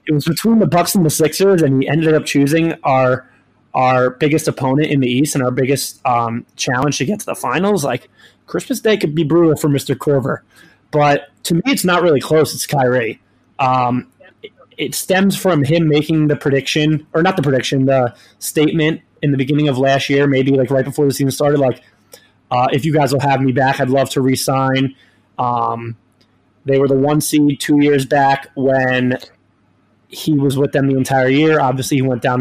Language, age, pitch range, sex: English, 20-39, 130-150 Hz, male